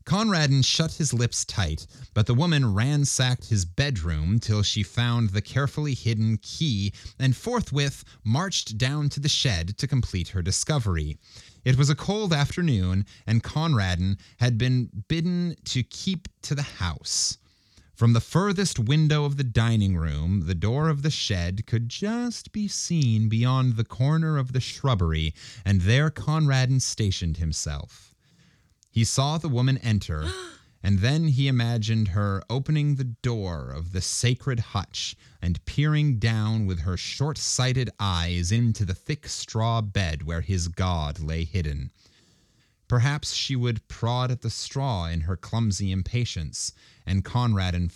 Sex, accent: male, American